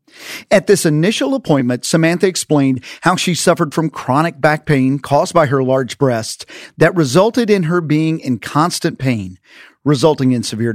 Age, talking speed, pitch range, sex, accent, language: 40-59, 160 wpm, 135-190 Hz, male, American, English